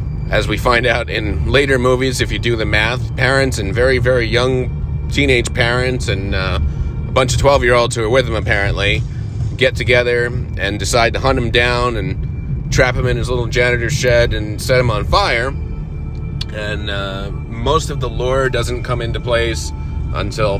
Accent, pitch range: American, 85-125 Hz